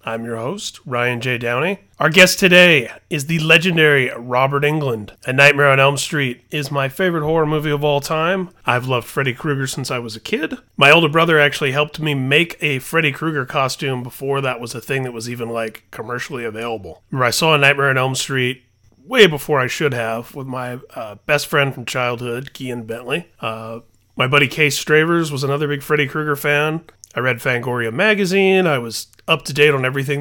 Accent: American